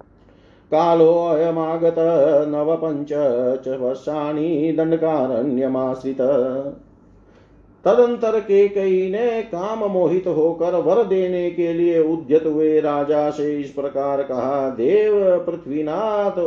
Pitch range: 135-180 Hz